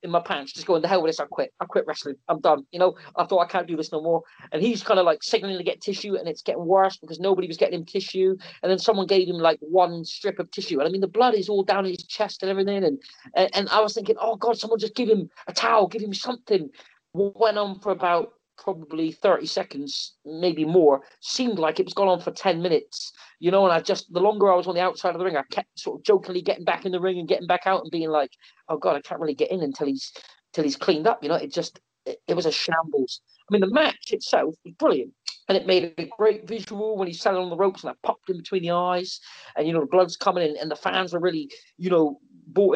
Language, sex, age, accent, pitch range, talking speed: English, male, 40-59, British, 160-200 Hz, 280 wpm